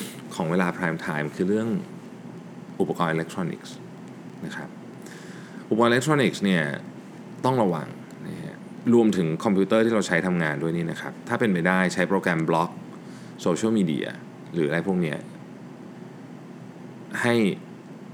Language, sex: Thai, male